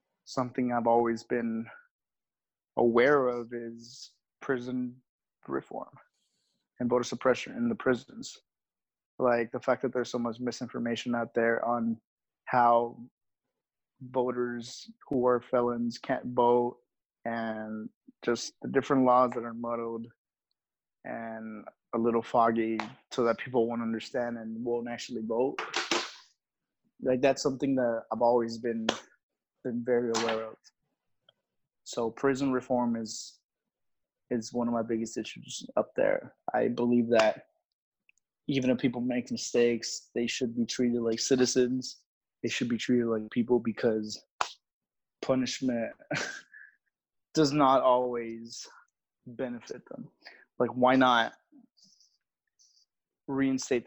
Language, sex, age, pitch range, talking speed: English, male, 20-39, 115-125 Hz, 120 wpm